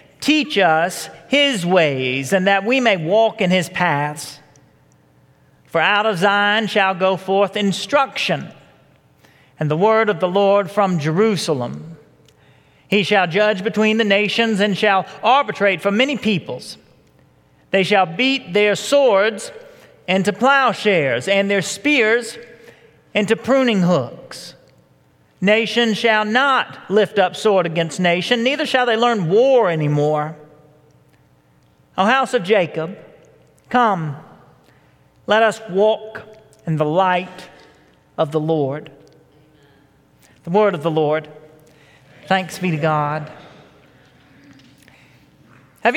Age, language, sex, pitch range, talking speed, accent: 40-59, English, male, 155-215 Hz, 120 wpm, American